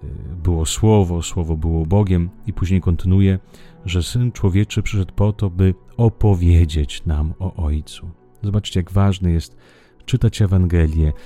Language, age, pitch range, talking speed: Italian, 40-59, 85-105 Hz, 135 wpm